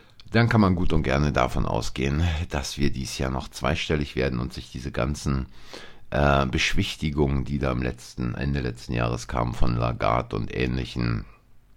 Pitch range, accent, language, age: 65-85 Hz, German, German, 50-69